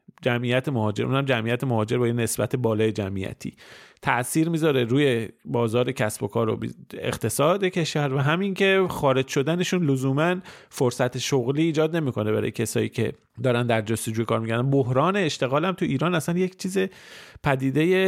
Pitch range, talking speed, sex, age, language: 120-145 Hz, 155 wpm, male, 40-59, Persian